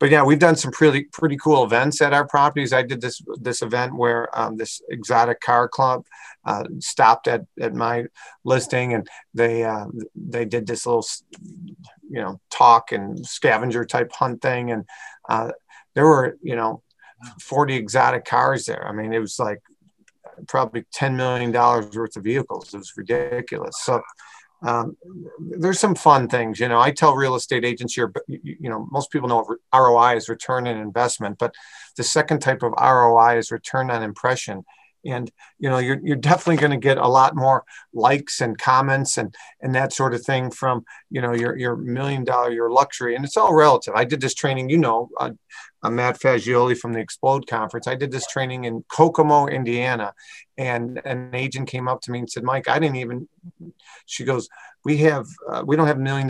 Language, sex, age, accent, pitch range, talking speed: English, male, 40-59, American, 120-140 Hz, 195 wpm